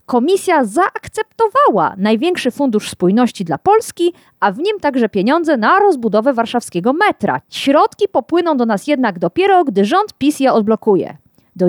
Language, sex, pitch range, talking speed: Polish, female, 205-305 Hz, 145 wpm